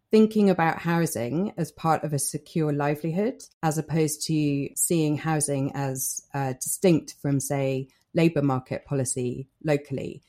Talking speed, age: 135 wpm, 30-49